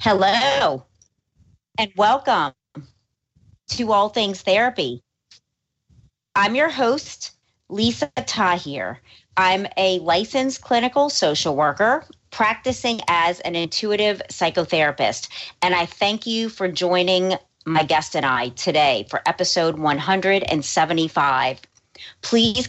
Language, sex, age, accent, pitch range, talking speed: English, female, 40-59, American, 170-210 Hz, 100 wpm